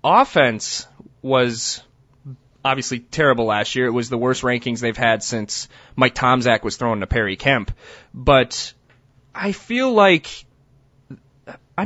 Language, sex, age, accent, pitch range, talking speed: English, male, 30-49, American, 130-170 Hz, 130 wpm